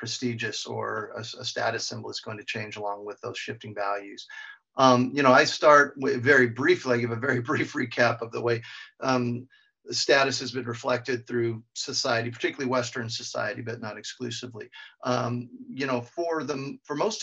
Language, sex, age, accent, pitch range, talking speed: English, male, 50-69, American, 115-130 Hz, 185 wpm